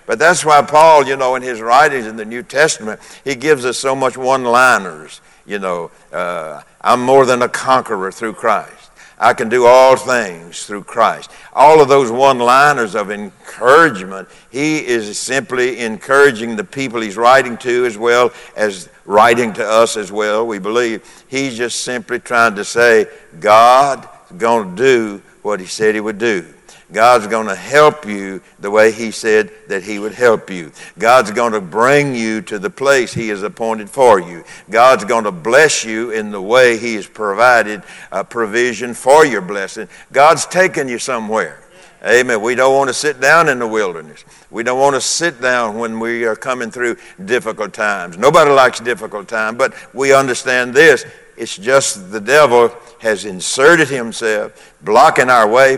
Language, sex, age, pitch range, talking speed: English, male, 60-79, 110-135 Hz, 180 wpm